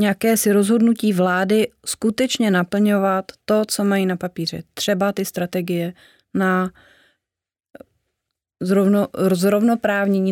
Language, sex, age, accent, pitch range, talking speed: Czech, female, 30-49, native, 180-210 Hz, 95 wpm